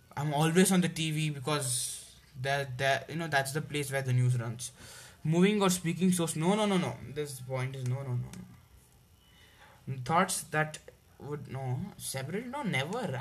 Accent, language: Indian, English